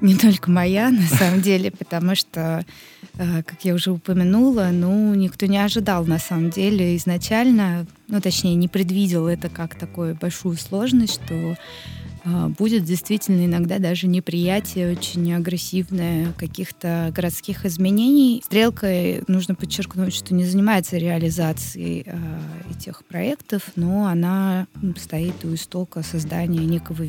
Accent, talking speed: native, 125 wpm